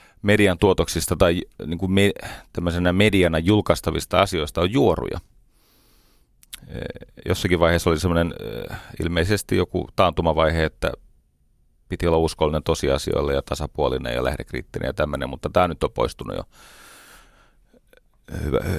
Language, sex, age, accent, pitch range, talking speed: Finnish, male, 30-49, native, 80-95 Hz, 120 wpm